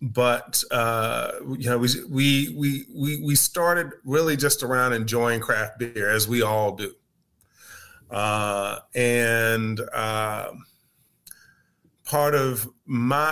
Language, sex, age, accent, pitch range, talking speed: English, male, 30-49, American, 110-130 Hz, 115 wpm